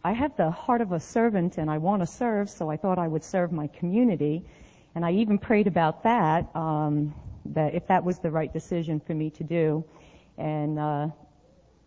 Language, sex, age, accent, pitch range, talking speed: English, female, 50-69, American, 155-200 Hz, 200 wpm